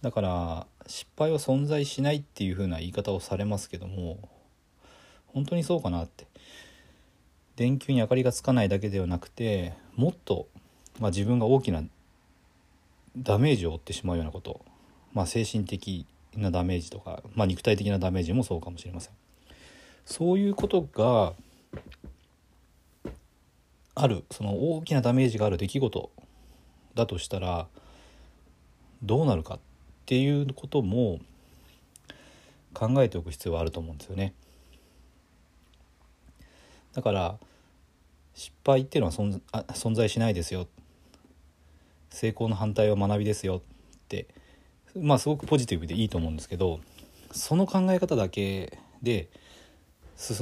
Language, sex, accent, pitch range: Japanese, male, native, 80-115 Hz